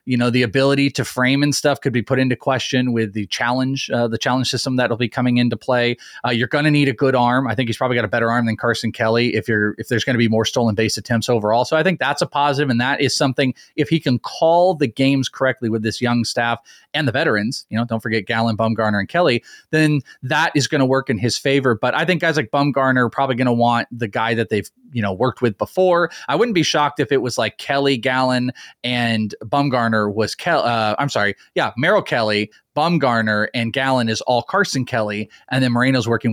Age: 30-49